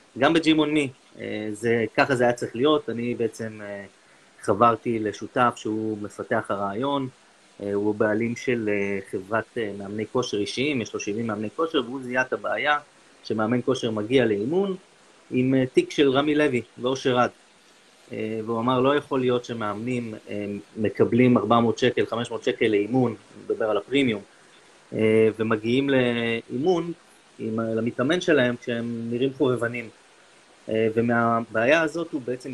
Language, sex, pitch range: Hebrew, male, 110-130 Hz